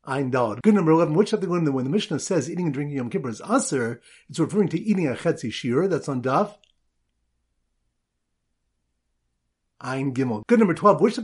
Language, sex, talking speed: English, male, 185 wpm